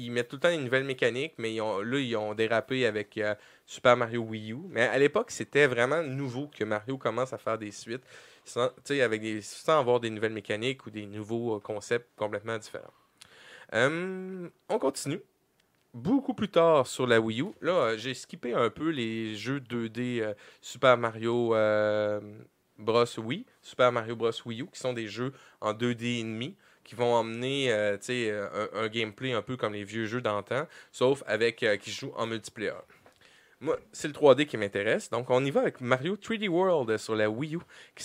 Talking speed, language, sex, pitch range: 200 wpm, French, male, 110-140 Hz